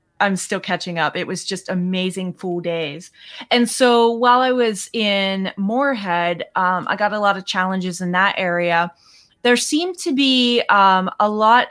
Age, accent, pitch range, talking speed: 20-39, American, 185-225 Hz, 175 wpm